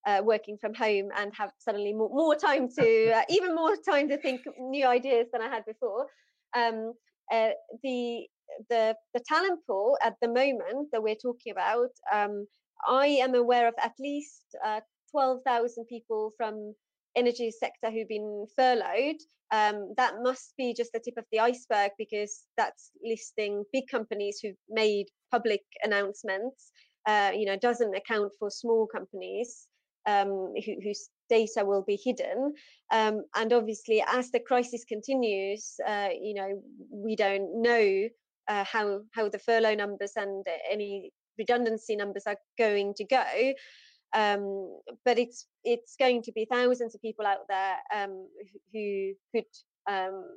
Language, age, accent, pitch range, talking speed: English, 30-49, British, 205-250 Hz, 155 wpm